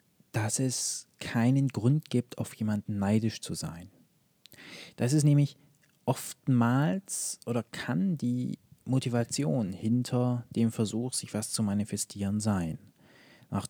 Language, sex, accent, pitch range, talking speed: German, male, German, 110-145 Hz, 120 wpm